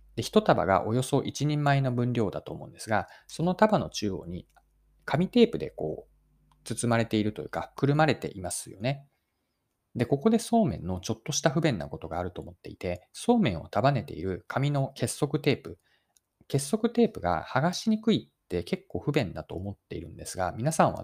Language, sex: Japanese, male